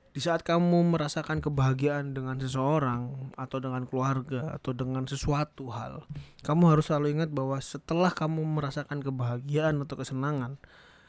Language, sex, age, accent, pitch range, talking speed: English, male, 20-39, Indonesian, 140-165 Hz, 135 wpm